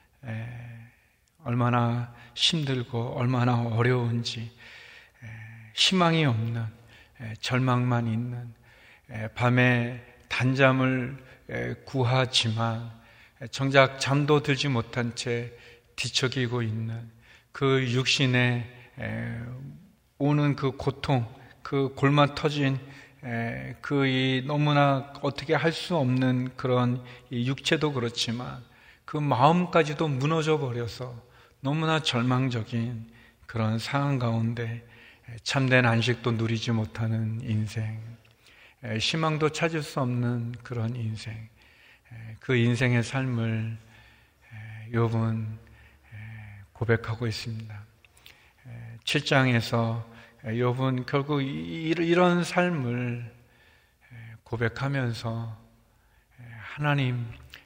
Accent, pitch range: native, 115-135 Hz